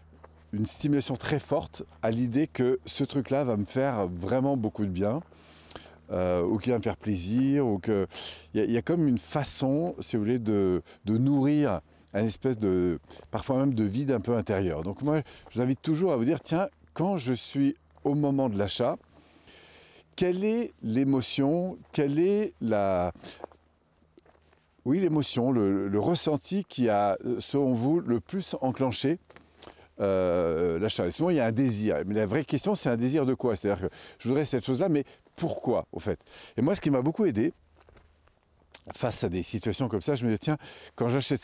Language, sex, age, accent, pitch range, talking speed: French, male, 50-69, French, 105-140 Hz, 185 wpm